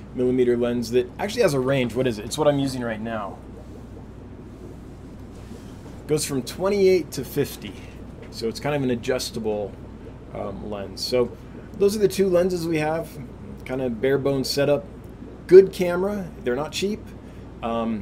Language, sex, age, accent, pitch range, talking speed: English, male, 20-39, American, 115-145 Hz, 155 wpm